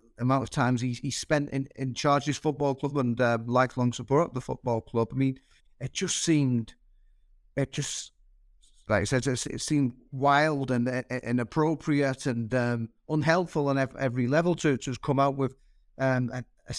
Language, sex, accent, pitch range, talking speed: English, male, British, 120-140 Hz, 180 wpm